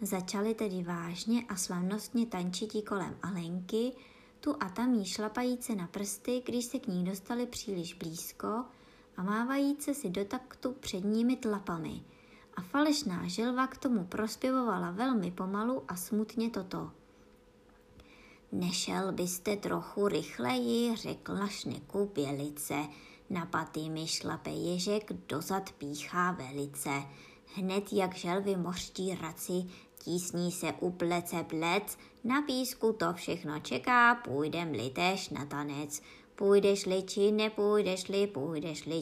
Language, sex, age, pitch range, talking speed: Czech, male, 20-39, 170-215 Hz, 115 wpm